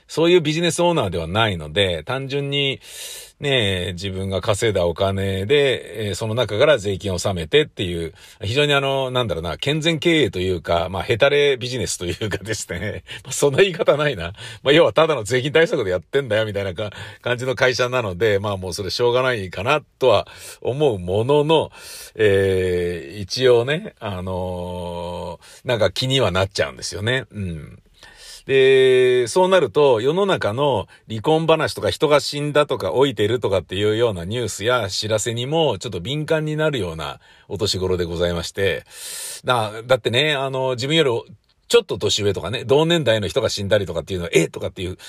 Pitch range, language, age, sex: 95-150 Hz, Japanese, 50-69, male